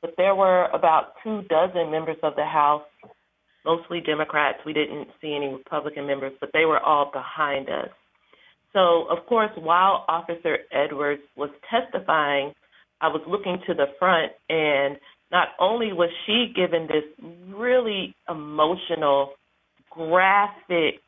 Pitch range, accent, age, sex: 150-185 Hz, American, 40-59, female